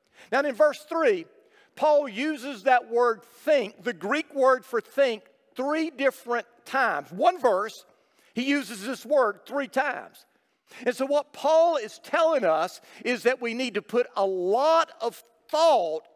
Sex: male